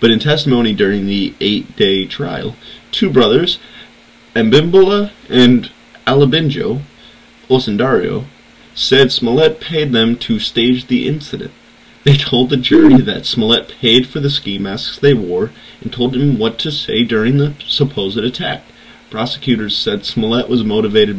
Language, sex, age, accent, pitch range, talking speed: English, male, 20-39, American, 110-145 Hz, 140 wpm